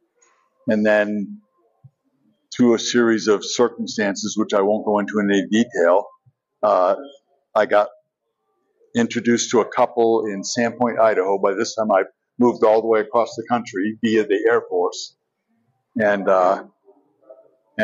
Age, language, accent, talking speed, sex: 60-79, English, American, 140 wpm, male